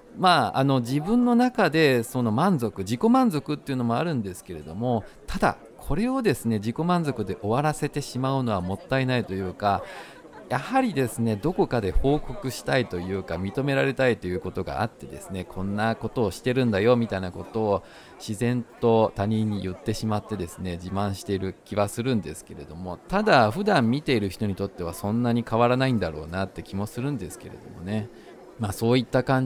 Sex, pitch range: male, 95-130 Hz